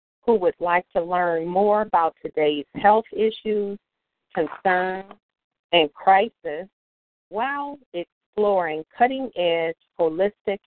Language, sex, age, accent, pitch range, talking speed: English, female, 50-69, American, 160-210 Hz, 95 wpm